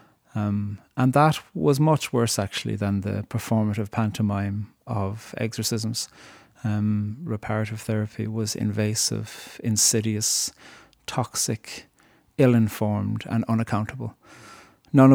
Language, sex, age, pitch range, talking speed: English, male, 30-49, 105-115 Hz, 95 wpm